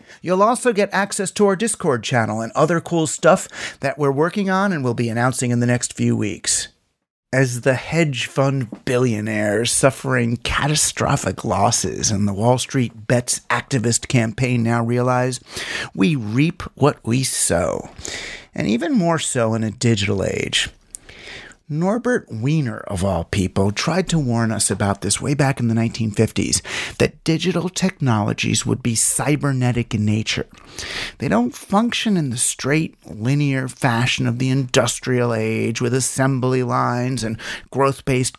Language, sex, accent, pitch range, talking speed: English, male, American, 115-145 Hz, 150 wpm